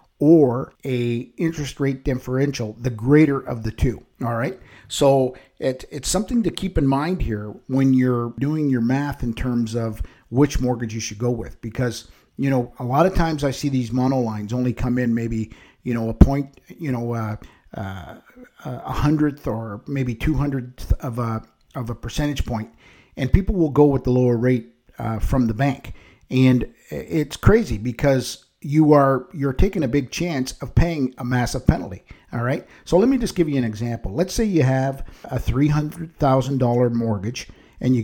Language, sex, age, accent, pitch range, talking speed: English, male, 50-69, American, 120-140 Hz, 185 wpm